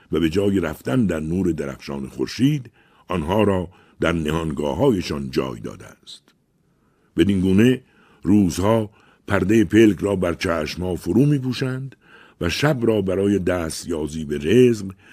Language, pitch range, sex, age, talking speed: Persian, 80-100 Hz, male, 60-79, 130 wpm